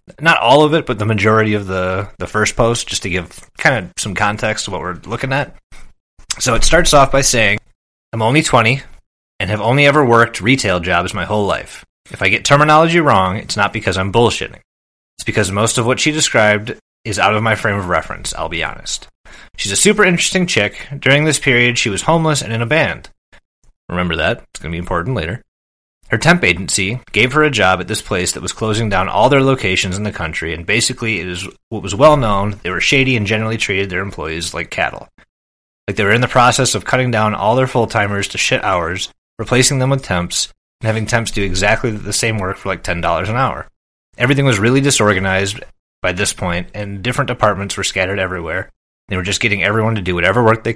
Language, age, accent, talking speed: English, 30-49, American, 220 wpm